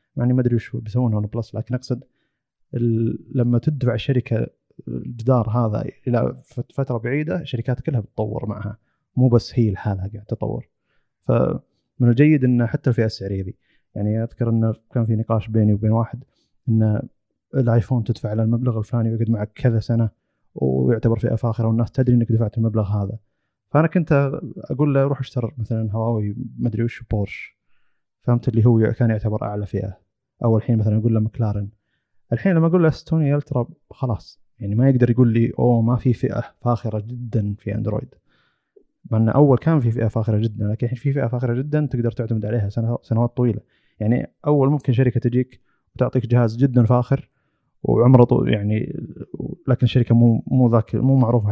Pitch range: 110-125 Hz